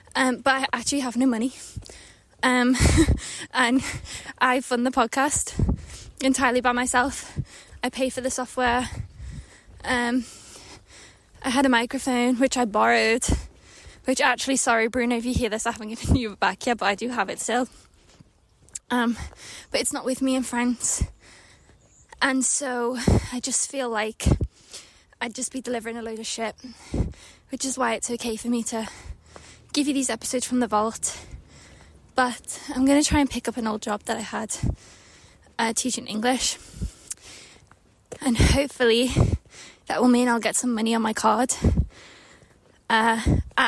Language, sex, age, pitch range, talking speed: English, female, 10-29, 225-260 Hz, 160 wpm